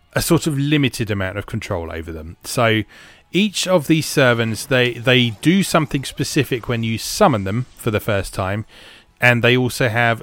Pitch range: 100-125 Hz